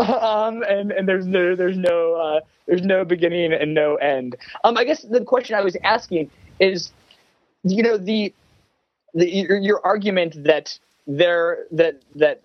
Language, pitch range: English, 140-195 Hz